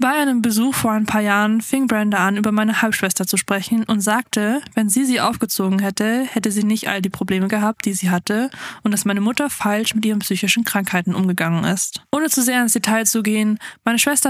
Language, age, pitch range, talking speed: German, 20-39, 200-235 Hz, 220 wpm